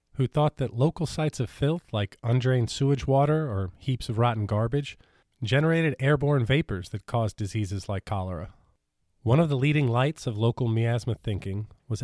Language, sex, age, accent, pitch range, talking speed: English, male, 40-59, American, 105-145 Hz, 170 wpm